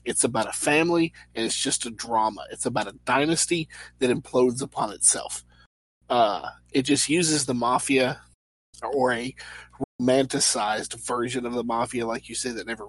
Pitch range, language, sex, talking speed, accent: 100-140 Hz, English, male, 165 wpm, American